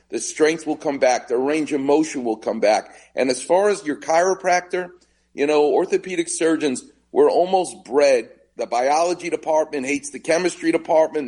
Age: 40-59